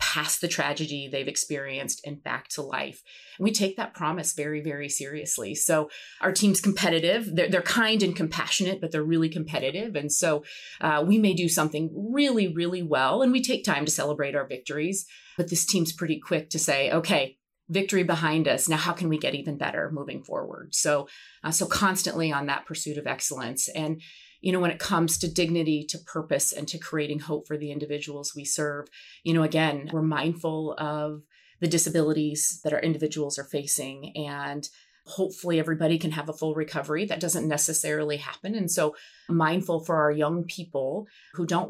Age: 30-49